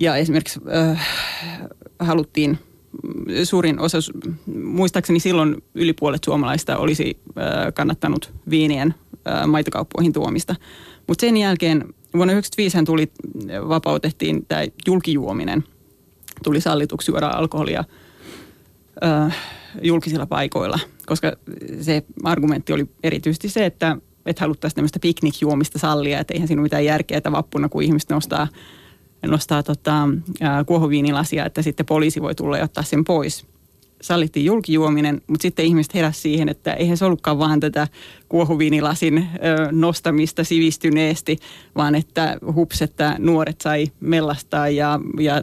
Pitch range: 150-165 Hz